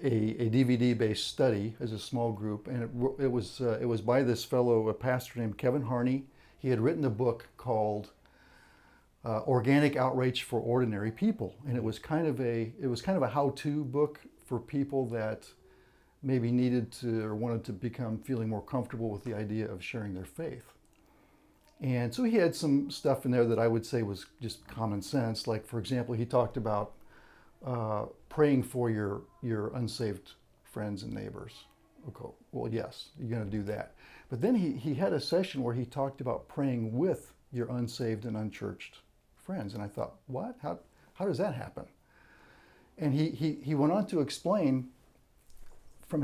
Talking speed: 185 wpm